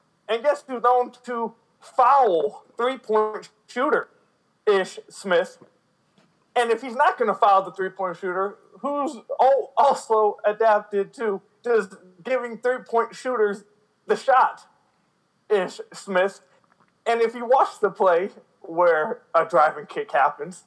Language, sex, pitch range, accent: English, male, 190-280 Hz, American